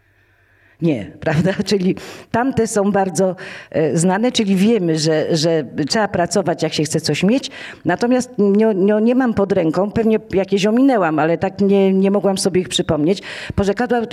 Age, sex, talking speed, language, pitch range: 50-69, female, 150 wpm, Polish, 150-195 Hz